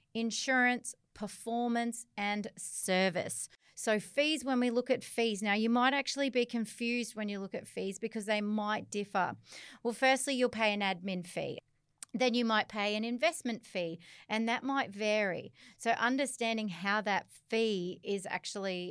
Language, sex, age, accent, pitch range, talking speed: English, female, 30-49, Australian, 190-240 Hz, 160 wpm